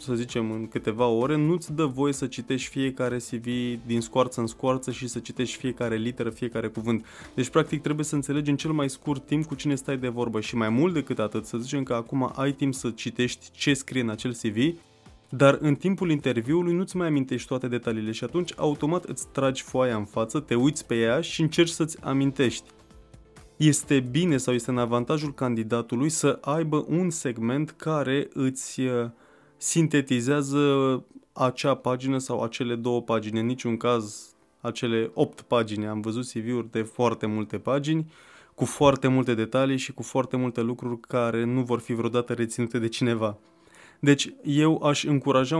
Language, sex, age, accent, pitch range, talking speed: Romanian, male, 20-39, native, 120-145 Hz, 175 wpm